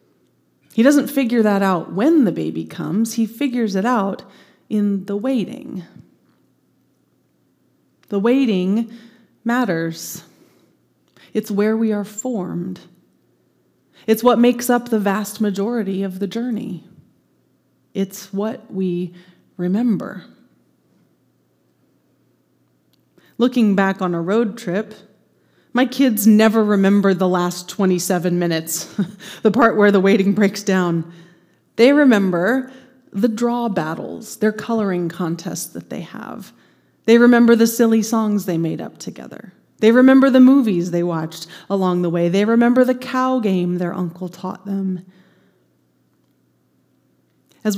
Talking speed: 125 wpm